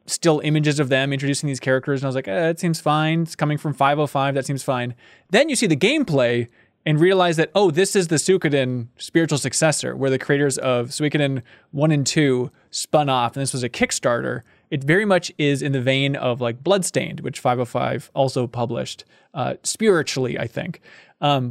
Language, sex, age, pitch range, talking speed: English, male, 20-39, 130-170 Hz, 200 wpm